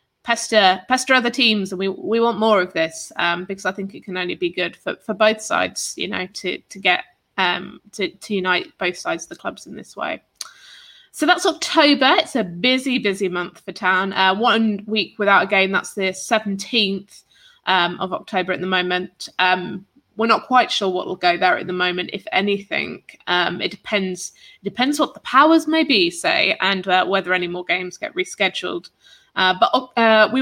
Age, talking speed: 20-39, 205 wpm